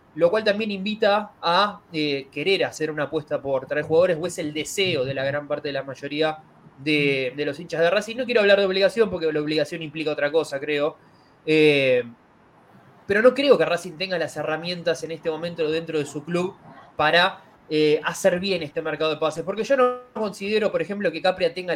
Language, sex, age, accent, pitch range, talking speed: Spanish, male, 20-39, Argentinian, 155-215 Hz, 205 wpm